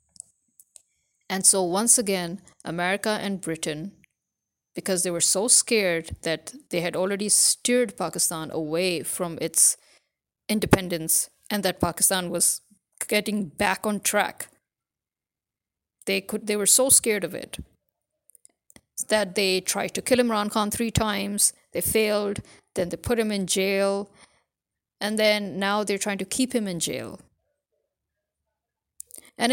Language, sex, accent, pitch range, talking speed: English, female, Indian, 175-215 Hz, 135 wpm